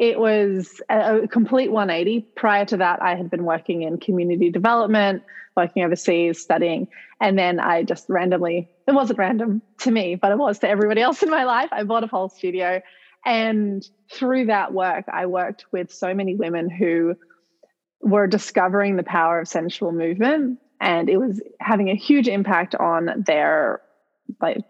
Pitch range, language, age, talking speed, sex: 180-220 Hz, English, 20-39, 170 wpm, female